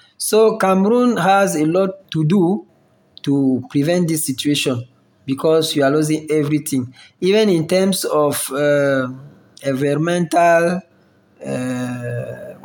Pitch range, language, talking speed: 135-170 Hz, English, 110 wpm